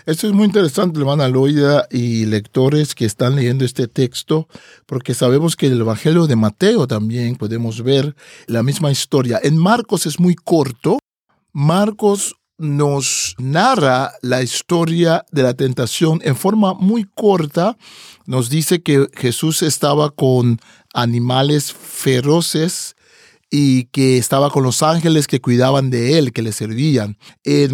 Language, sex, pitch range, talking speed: Spanish, male, 130-170 Hz, 145 wpm